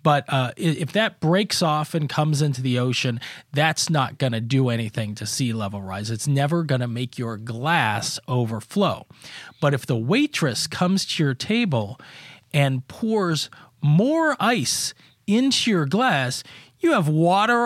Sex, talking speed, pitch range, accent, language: male, 160 wpm, 125-170 Hz, American, English